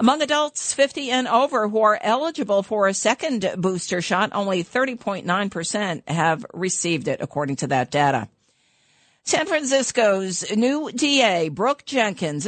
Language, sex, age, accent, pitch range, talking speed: English, female, 50-69, American, 160-220 Hz, 135 wpm